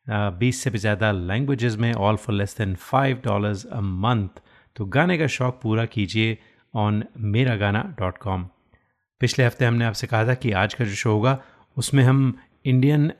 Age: 30-49